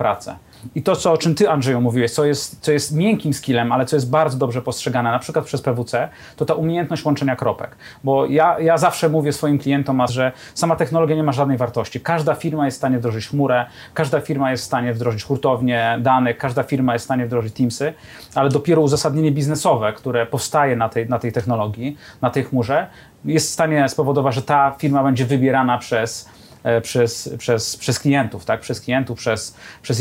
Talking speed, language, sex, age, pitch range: 200 wpm, Polish, male, 30-49, 125-160 Hz